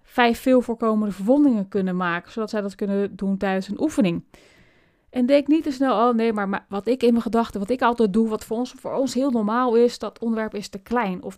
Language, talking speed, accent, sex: Dutch, 230 wpm, Dutch, female